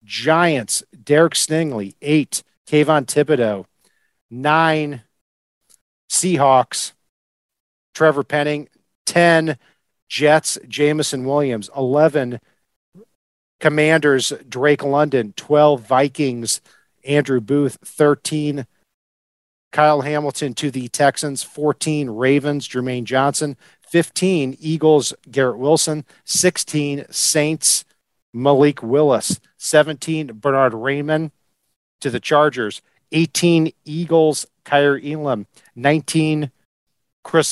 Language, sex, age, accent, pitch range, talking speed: English, male, 50-69, American, 135-155 Hz, 85 wpm